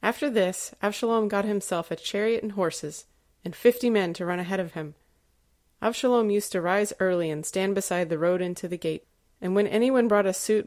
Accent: American